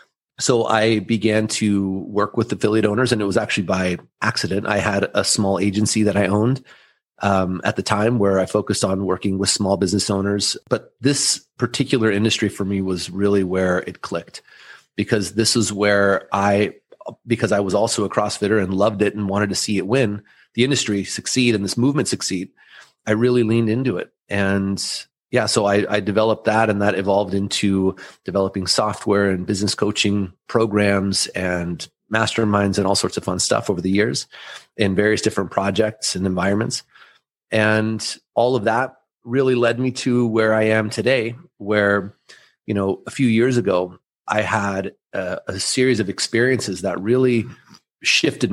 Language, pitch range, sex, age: English, 100-115 Hz, male, 30-49